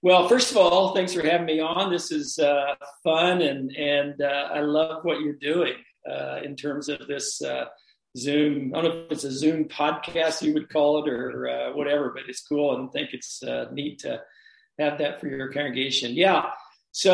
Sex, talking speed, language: male, 205 wpm, English